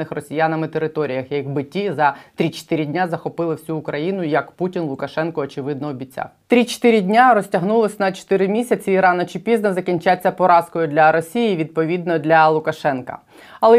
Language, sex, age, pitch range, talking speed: Ukrainian, female, 20-39, 160-195 Hz, 145 wpm